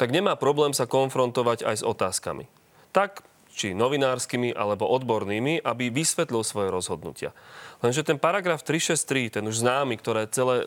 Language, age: Slovak, 30-49